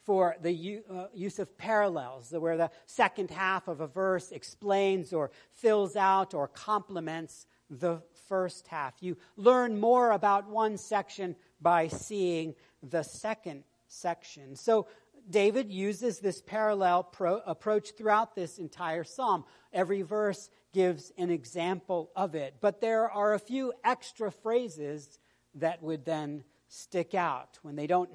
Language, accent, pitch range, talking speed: English, American, 155-205 Hz, 135 wpm